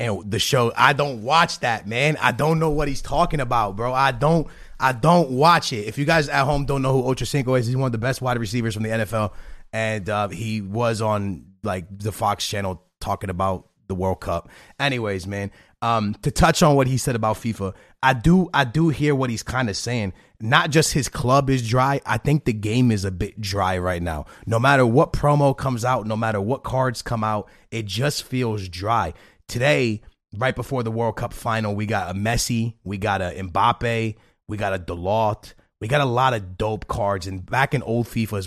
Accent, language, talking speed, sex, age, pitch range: American, English, 220 wpm, male, 30-49, 105-130 Hz